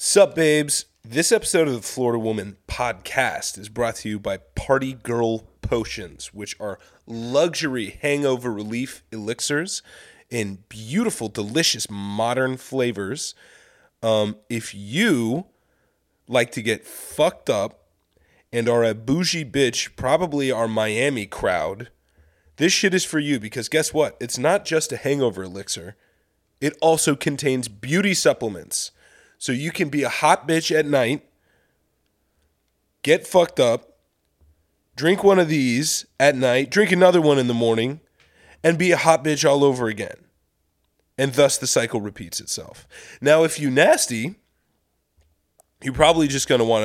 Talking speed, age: 145 wpm, 30-49